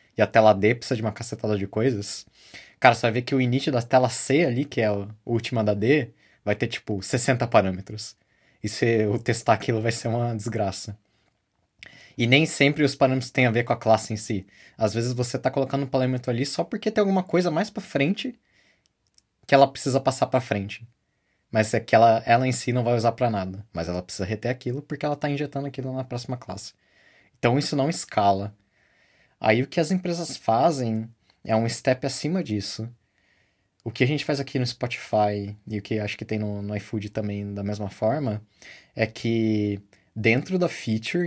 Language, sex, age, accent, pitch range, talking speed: Portuguese, male, 20-39, Brazilian, 105-130 Hz, 205 wpm